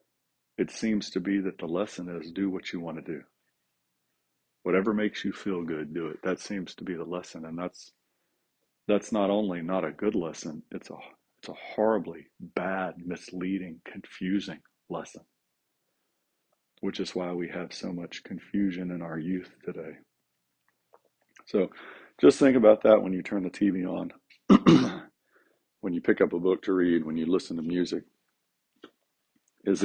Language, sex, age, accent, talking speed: English, male, 40-59, American, 165 wpm